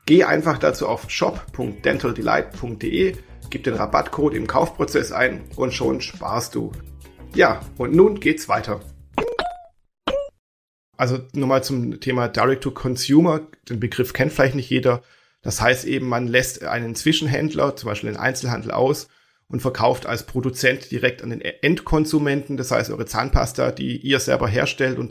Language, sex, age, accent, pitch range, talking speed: German, male, 40-59, German, 120-145 Hz, 145 wpm